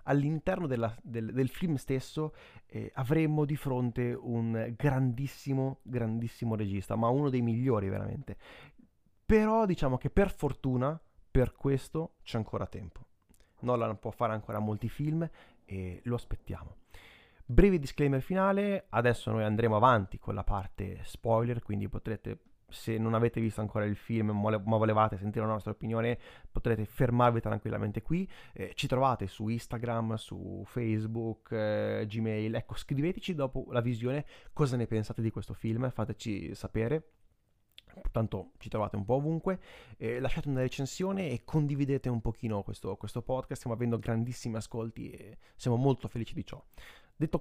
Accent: native